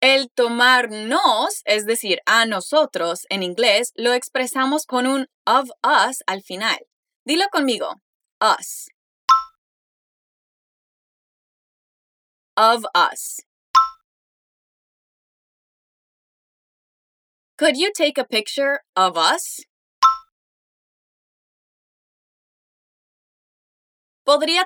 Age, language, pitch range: 10-29, Spanish, 245-330 Hz